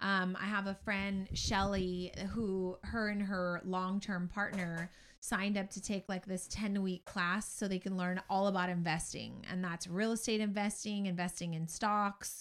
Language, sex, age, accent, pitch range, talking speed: English, female, 20-39, American, 180-210 Hz, 170 wpm